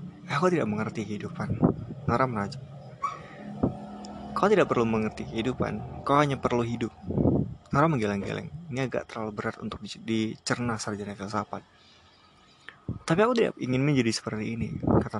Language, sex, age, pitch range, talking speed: Indonesian, male, 20-39, 105-125 Hz, 130 wpm